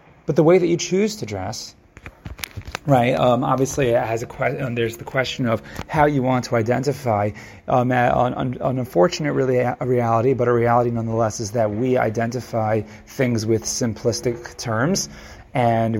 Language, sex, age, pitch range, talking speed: English, male, 30-49, 115-140 Hz, 165 wpm